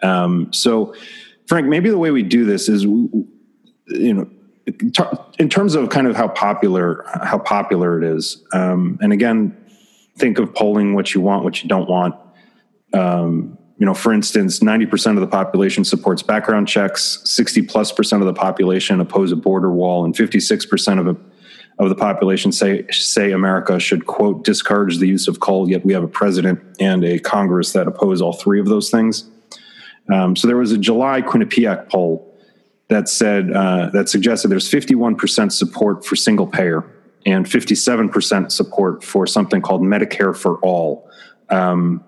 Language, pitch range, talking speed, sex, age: English, 95-115 Hz, 170 wpm, male, 30-49